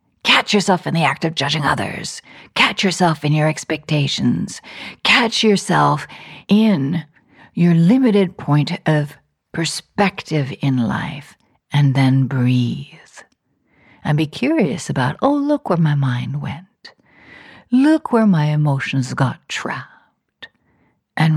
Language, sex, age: English, female, 60-79